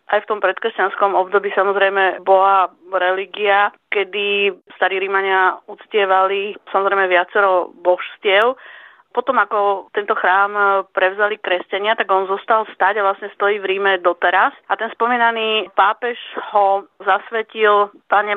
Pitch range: 195-215 Hz